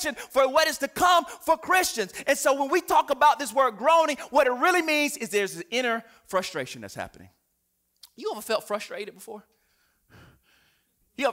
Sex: male